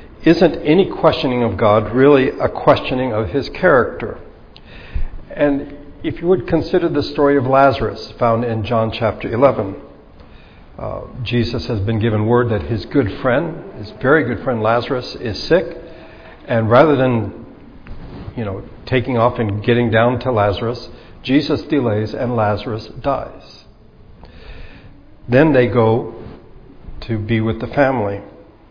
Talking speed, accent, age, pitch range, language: 140 wpm, American, 60-79, 110-145 Hz, English